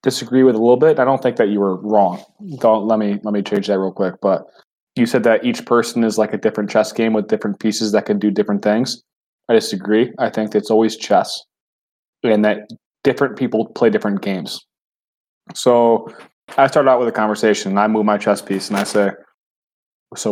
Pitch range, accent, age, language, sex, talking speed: 105-125 Hz, American, 20-39, English, male, 215 wpm